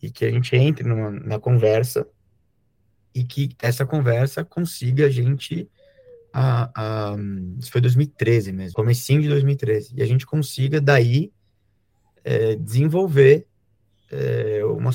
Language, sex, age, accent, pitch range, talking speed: Portuguese, male, 20-39, Brazilian, 105-130 Hz, 120 wpm